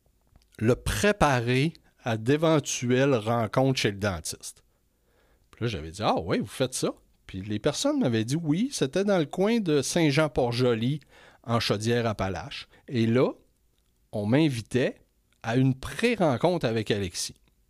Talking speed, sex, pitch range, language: 135 wpm, male, 105-140 Hz, French